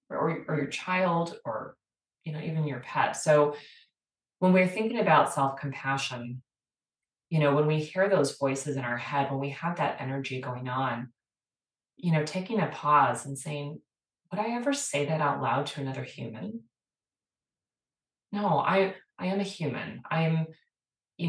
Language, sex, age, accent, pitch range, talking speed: English, female, 30-49, American, 135-185 Hz, 165 wpm